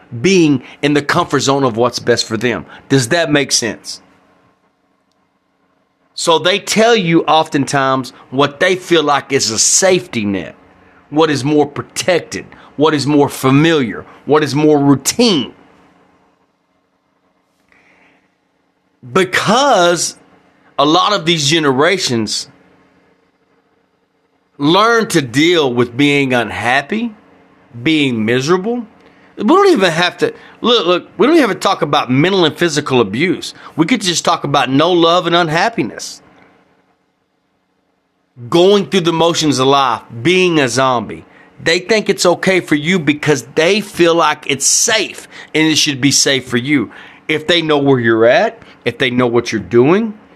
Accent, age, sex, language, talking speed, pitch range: American, 40-59, male, English, 145 wpm, 120-170 Hz